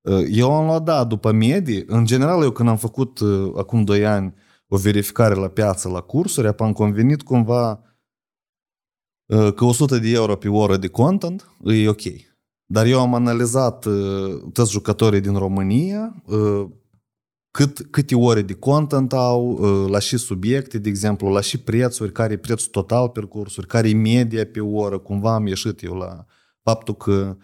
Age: 30-49